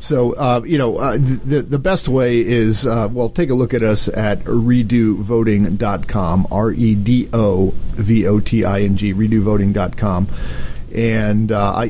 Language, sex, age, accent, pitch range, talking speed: English, male, 40-59, American, 100-120 Hz, 195 wpm